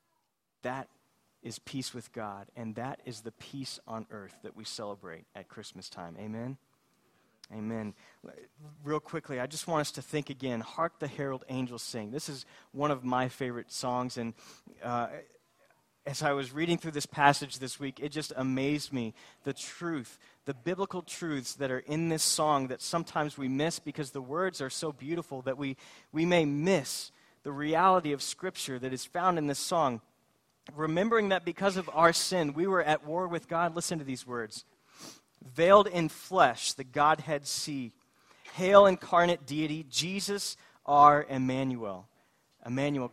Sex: male